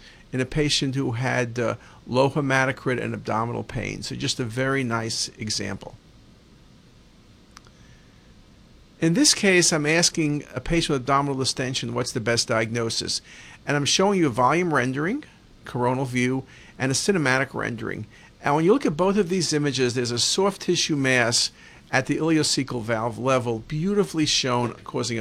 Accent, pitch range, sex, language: American, 120-160 Hz, male, English